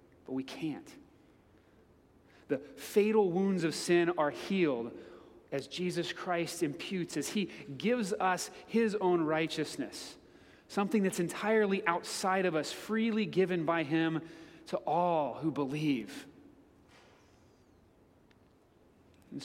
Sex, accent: male, American